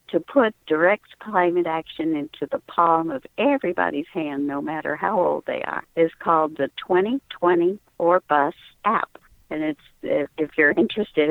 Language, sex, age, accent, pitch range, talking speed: English, female, 60-79, American, 155-190 Hz, 155 wpm